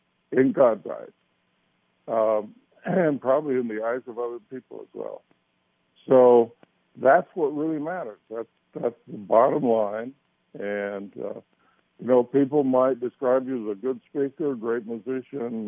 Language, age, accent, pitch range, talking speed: English, 60-79, American, 95-120 Hz, 145 wpm